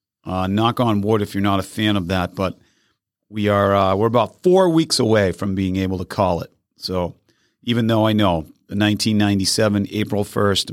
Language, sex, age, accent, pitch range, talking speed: English, male, 40-59, American, 95-120 Hz, 195 wpm